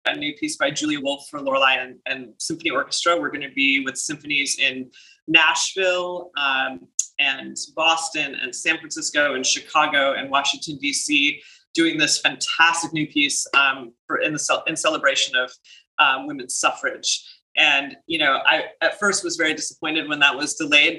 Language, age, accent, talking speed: English, 30-49, American, 170 wpm